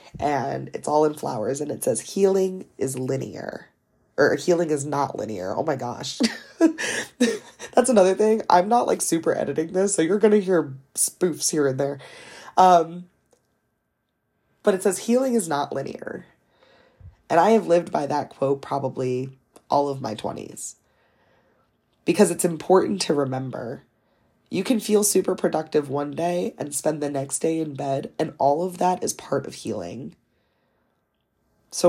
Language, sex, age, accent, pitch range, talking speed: English, female, 20-39, American, 145-195 Hz, 160 wpm